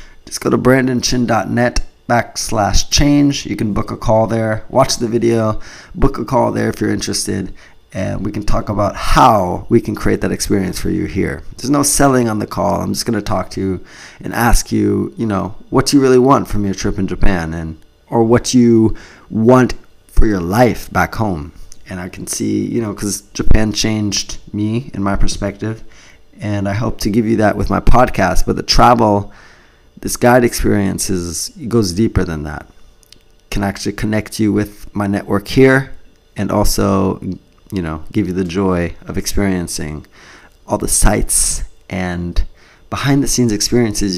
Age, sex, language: 20-39, male, English